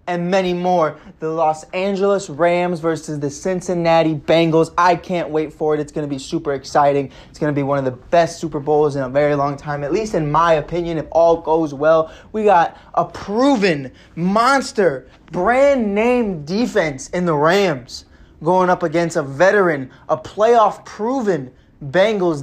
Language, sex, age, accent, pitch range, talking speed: English, male, 20-39, American, 150-200 Hz, 175 wpm